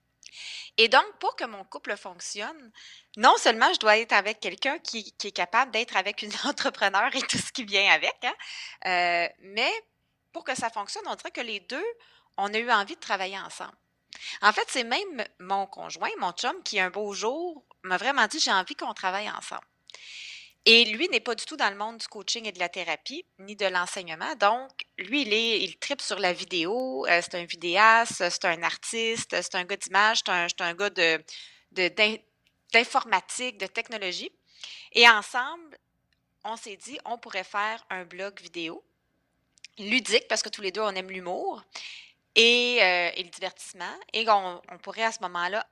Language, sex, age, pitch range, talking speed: French, female, 30-49, 185-240 Hz, 190 wpm